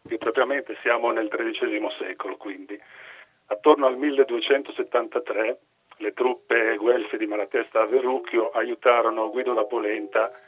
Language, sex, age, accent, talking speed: Italian, male, 40-59, native, 120 wpm